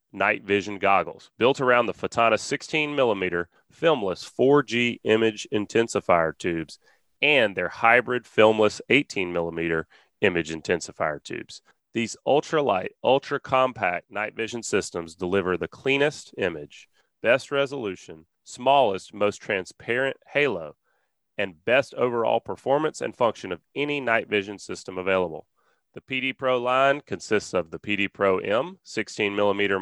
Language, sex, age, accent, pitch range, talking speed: English, male, 30-49, American, 105-150 Hz, 130 wpm